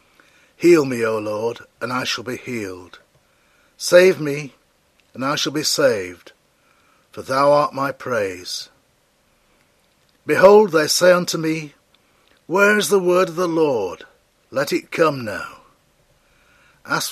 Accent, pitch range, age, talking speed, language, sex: British, 135-185 Hz, 60-79, 135 wpm, English, male